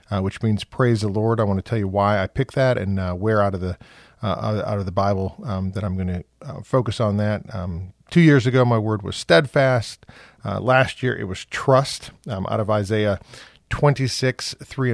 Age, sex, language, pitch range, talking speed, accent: 40-59, male, English, 100-125 Hz, 220 wpm, American